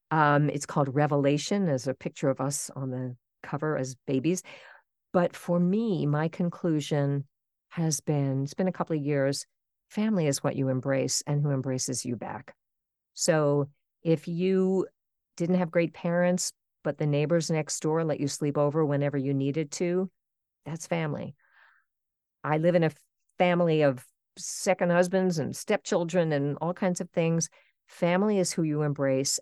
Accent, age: American, 50-69